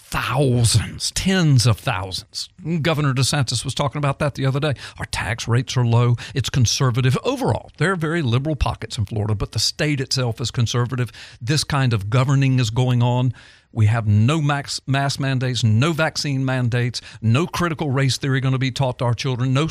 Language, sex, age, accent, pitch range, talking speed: English, male, 50-69, American, 120-165 Hz, 190 wpm